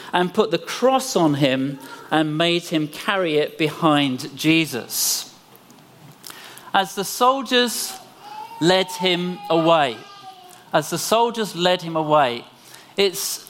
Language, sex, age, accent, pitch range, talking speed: English, male, 40-59, British, 150-185 Hz, 115 wpm